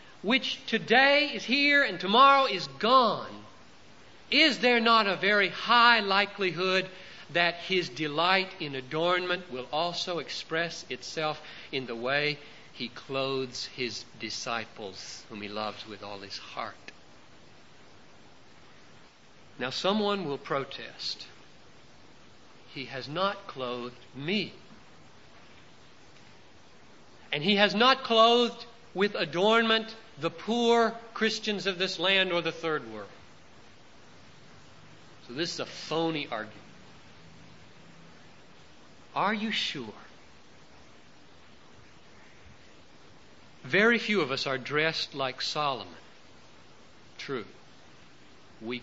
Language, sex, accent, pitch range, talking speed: English, male, American, 135-210 Hz, 100 wpm